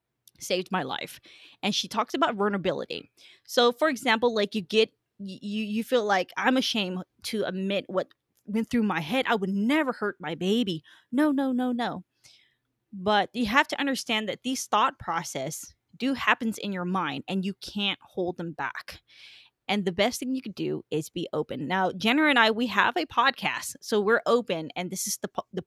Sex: female